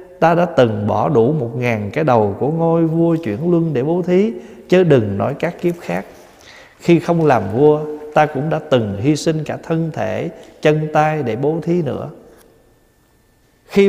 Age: 20-39